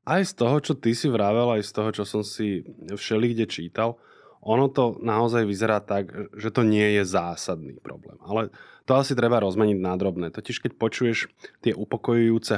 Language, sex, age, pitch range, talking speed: Slovak, male, 20-39, 95-115 Hz, 180 wpm